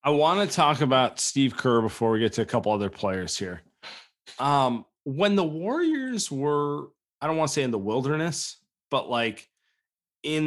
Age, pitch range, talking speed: 30-49, 115-150 Hz, 180 wpm